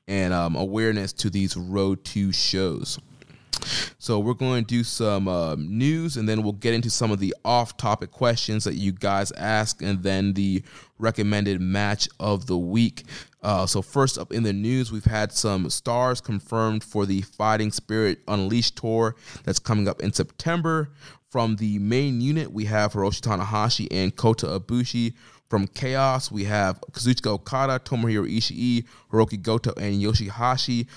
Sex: male